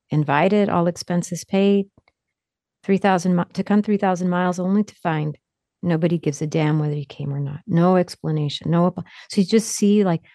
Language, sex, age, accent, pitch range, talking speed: English, female, 40-59, American, 160-195 Hz, 180 wpm